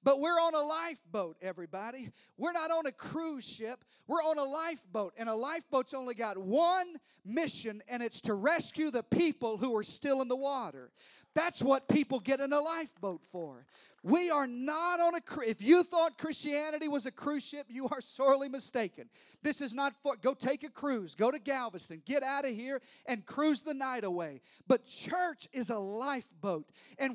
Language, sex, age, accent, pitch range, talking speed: English, male, 40-59, American, 210-290 Hz, 190 wpm